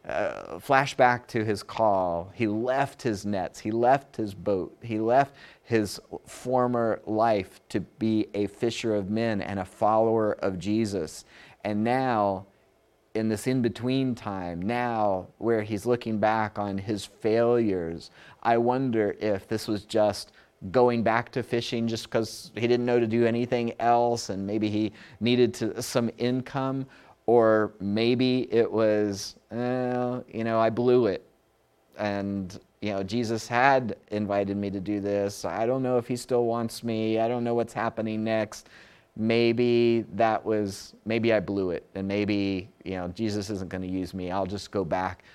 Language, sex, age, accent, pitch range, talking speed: English, male, 30-49, American, 100-120 Hz, 160 wpm